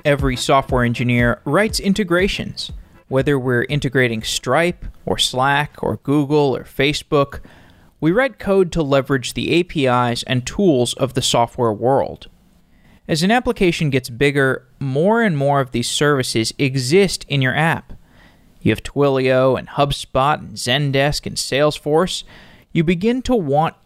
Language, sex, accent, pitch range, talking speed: English, male, American, 120-160 Hz, 140 wpm